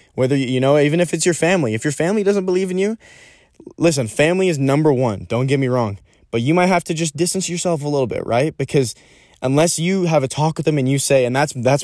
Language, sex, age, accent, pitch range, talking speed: English, male, 20-39, American, 120-150 Hz, 255 wpm